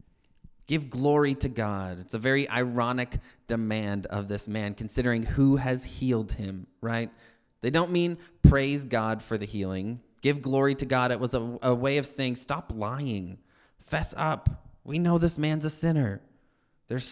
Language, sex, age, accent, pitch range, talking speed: English, male, 30-49, American, 110-140 Hz, 170 wpm